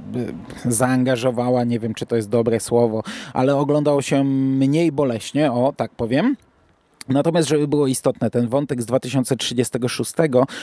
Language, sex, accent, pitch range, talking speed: Polish, male, native, 125-150 Hz, 135 wpm